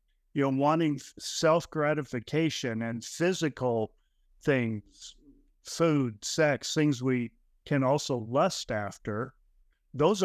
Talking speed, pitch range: 95 wpm, 120-145 Hz